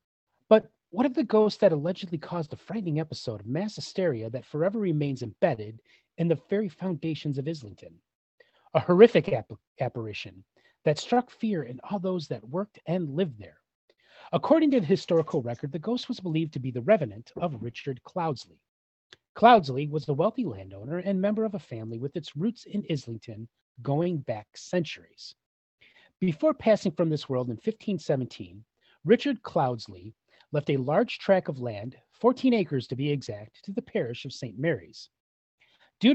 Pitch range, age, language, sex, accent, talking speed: 125-190 Hz, 30-49, English, male, American, 165 wpm